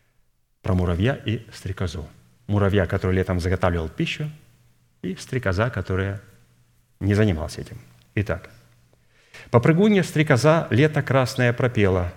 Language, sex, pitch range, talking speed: Russian, male, 95-130 Hz, 105 wpm